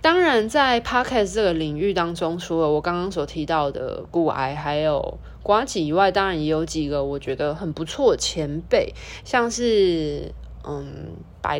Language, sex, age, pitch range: Chinese, female, 20-39, 155-220 Hz